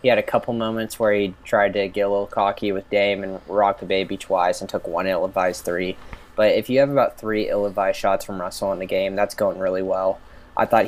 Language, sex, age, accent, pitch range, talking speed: English, male, 10-29, American, 100-115 Hz, 245 wpm